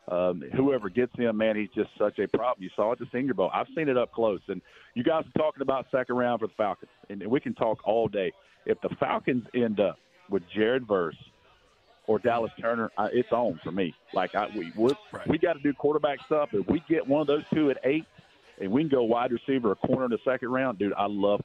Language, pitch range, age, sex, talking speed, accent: English, 110-145 Hz, 40-59, male, 245 wpm, American